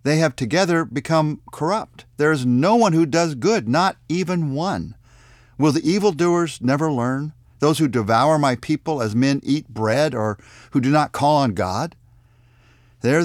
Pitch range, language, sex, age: 110-150 Hz, English, male, 50-69